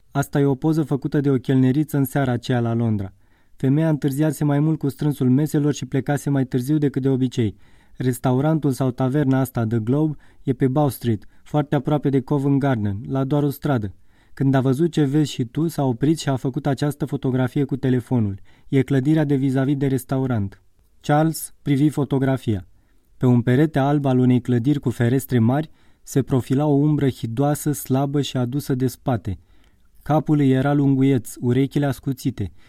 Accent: native